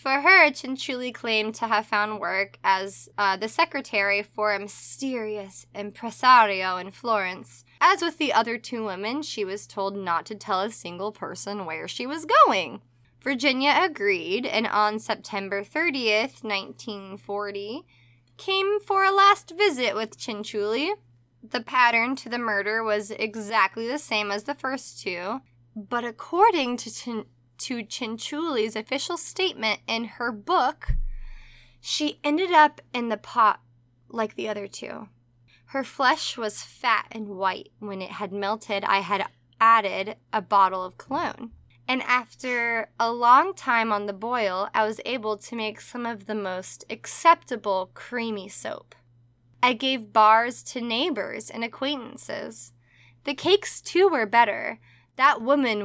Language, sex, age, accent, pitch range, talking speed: English, female, 20-39, American, 195-250 Hz, 145 wpm